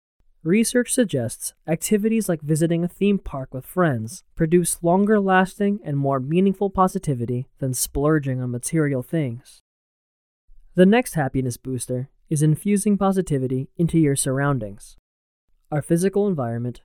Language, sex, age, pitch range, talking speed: English, male, 20-39, 130-180 Hz, 120 wpm